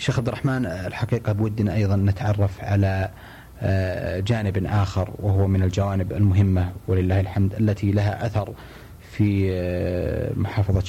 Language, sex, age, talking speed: Arabic, male, 30-49, 115 wpm